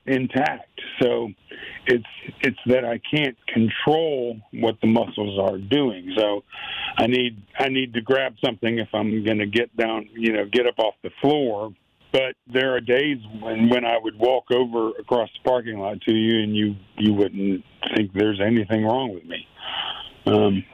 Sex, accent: male, American